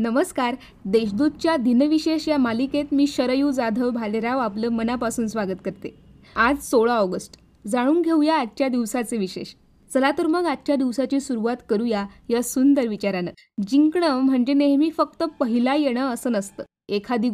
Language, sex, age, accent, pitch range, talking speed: Marathi, female, 20-39, native, 230-280 Hz, 140 wpm